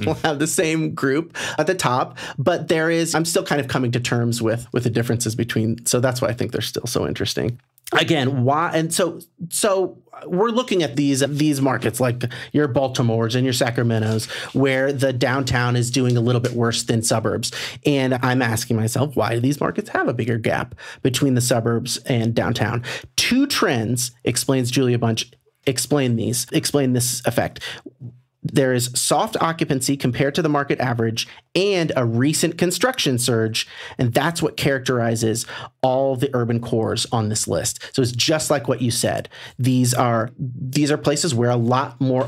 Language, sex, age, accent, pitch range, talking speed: English, male, 30-49, American, 120-150 Hz, 180 wpm